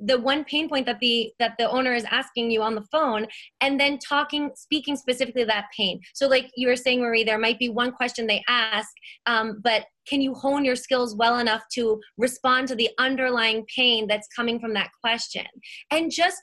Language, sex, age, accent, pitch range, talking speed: English, female, 20-39, American, 225-260 Hz, 210 wpm